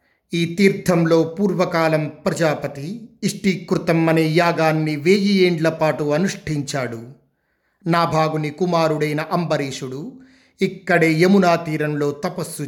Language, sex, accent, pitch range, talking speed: Telugu, male, native, 135-170 Hz, 85 wpm